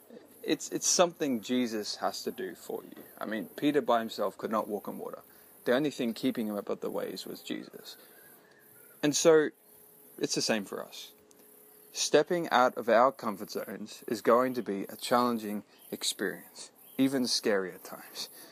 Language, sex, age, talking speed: English, male, 20-39, 170 wpm